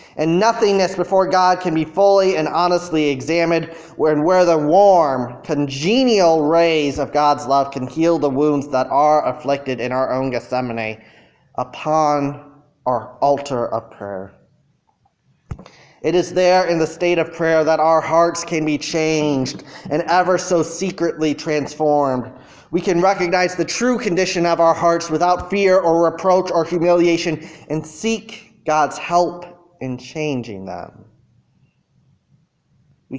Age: 20-39